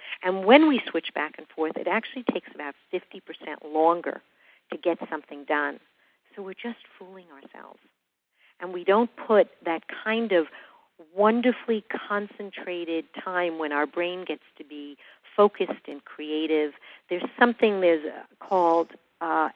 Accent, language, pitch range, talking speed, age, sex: American, English, 155-205 Hz, 145 wpm, 50-69, female